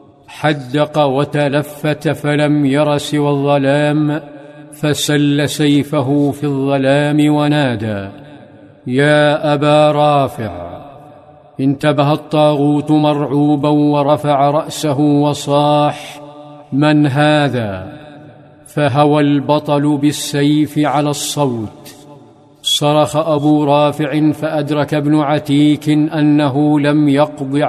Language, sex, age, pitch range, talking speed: Arabic, male, 50-69, 145-150 Hz, 80 wpm